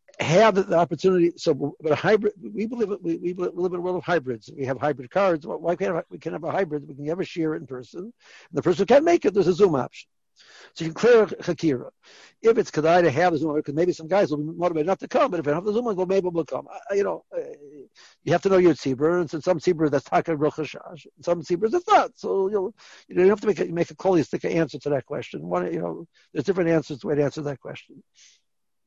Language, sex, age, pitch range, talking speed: English, male, 60-79, 150-190 Hz, 285 wpm